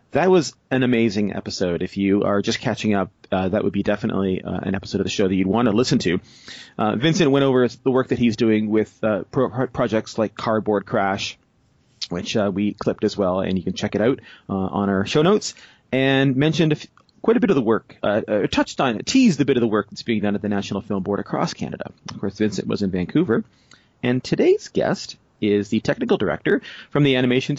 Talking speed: 235 wpm